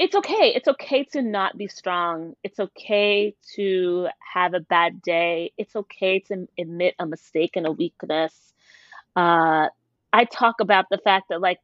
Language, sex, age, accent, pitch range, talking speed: English, female, 30-49, American, 175-220 Hz, 165 wpm